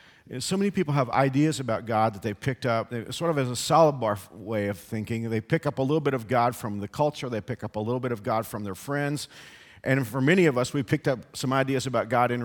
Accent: American